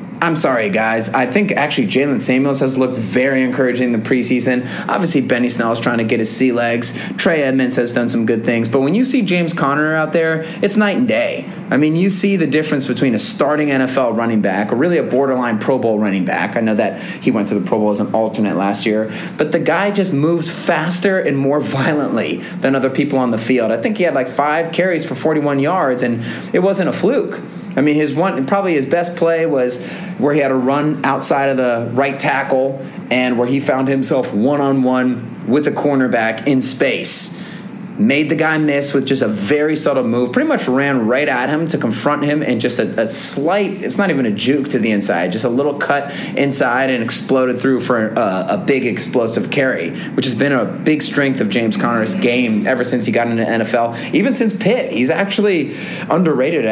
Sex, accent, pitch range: male, American, 120-160 Hz